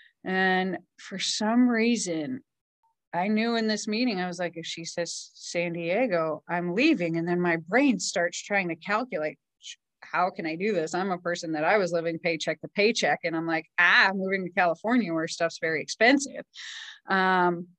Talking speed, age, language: 185 wpm, 30-49, English